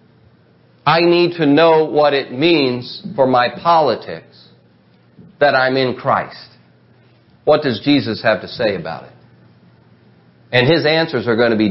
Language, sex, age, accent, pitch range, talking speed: English, male, 40-59, American, 120-160 Hz, 150 wpm